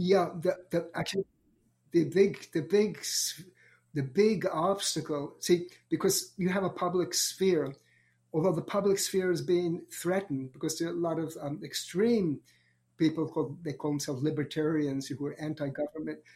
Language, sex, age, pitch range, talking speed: English, male, 60-79, 140-165 Hz, 155 wpm